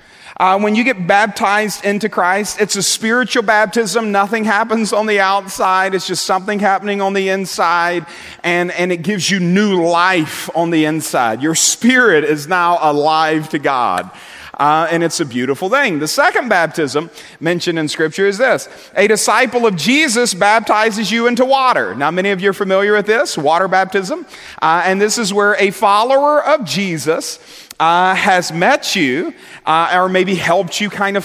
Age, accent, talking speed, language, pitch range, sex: 40-59, American, 175 wpm, English, 170-215 Hz, male